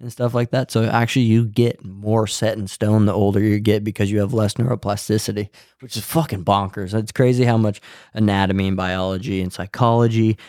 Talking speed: 195 wpm